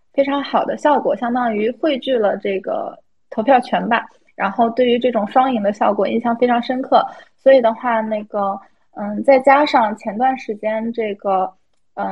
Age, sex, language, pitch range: 20-39, female, Chinese, 205-250 Hz